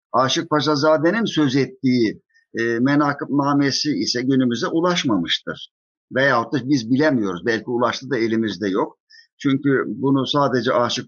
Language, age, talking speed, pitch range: Turkish, 50-69, 130 wpm, 120-175 Hz